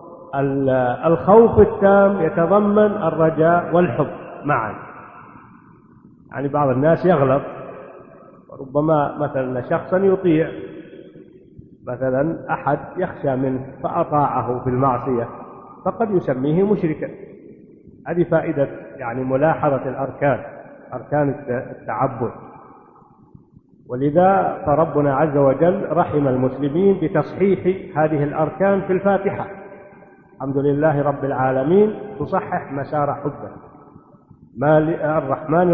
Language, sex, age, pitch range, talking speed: Arabic, male, 50-69, 140-180 Hz, 85 wpm